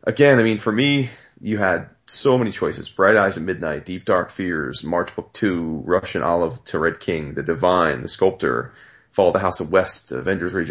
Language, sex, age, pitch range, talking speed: English, male, 30-49, 95-125 Hz, 205 wpm